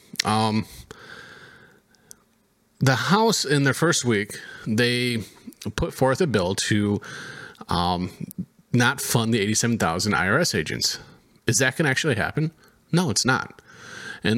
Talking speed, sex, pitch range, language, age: 125 wpm, male, 120-180 Hz, English, 30-49